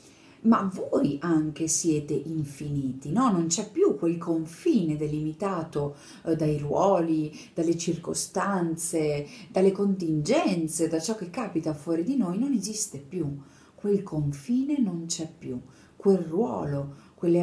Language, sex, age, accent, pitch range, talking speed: Italian, female, 40-59, native, 155-225 Hz, 125 wpm